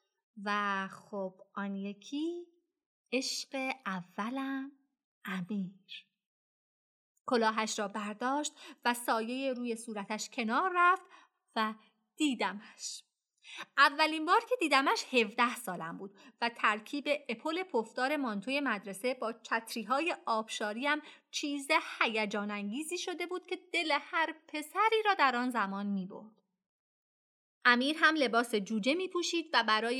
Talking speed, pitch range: 115 wpm, 215-295 Hz